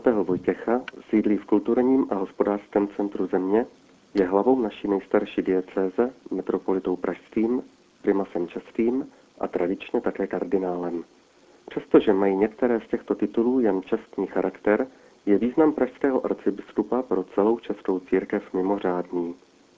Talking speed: 120 wpm